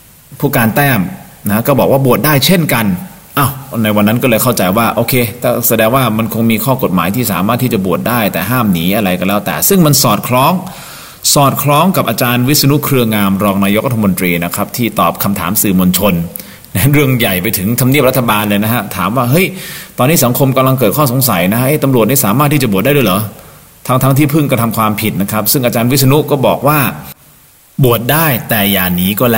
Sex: male